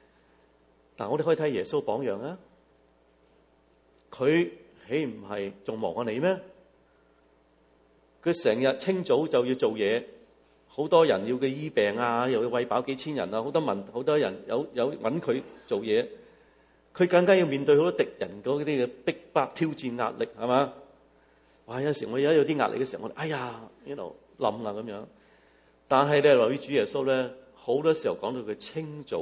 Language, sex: English, male